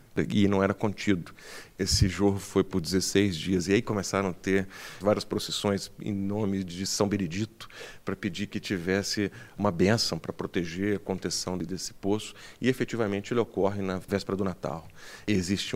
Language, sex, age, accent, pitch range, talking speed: Portuguese, male, 40-59, Brazilian, 95-125 Hz, 165 wpm